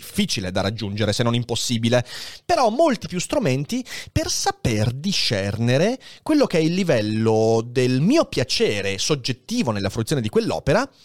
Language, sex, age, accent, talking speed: Italian, male, 30-49, native, 140 wpm